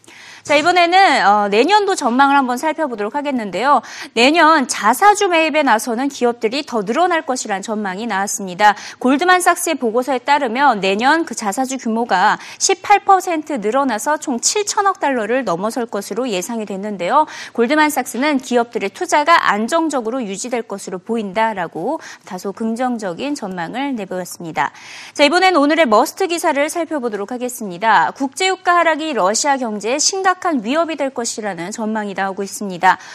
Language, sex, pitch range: Korean, female, 215-310 Hz